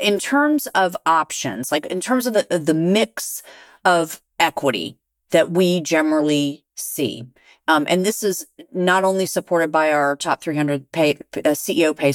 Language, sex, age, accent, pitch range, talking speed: English, female, 40-59, American, 140-180 Hz, 160 wpm